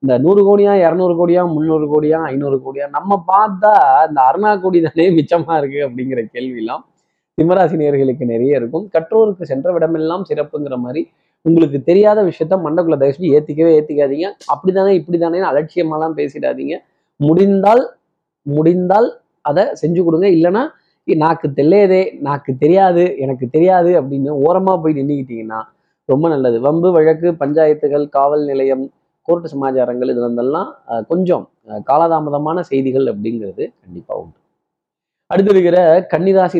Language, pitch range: Tamil, 140-180 Hz